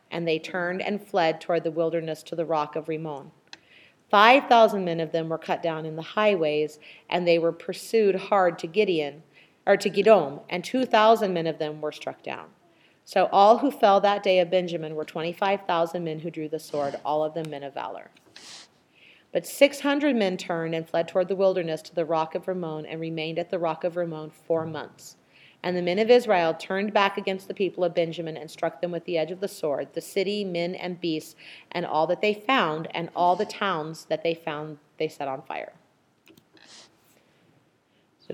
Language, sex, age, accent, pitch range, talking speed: English, female, 40-59, American, 160-205 Hz, 200 wpm